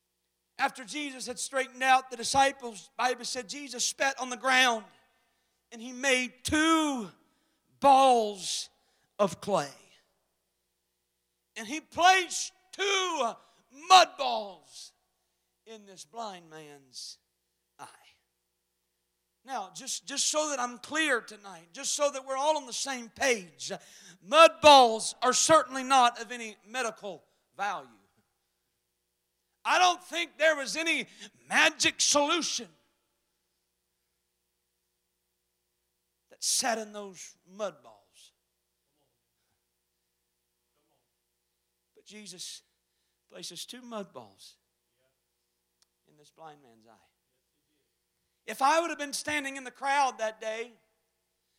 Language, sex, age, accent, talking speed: English, male, 40-59, American, 110 wpm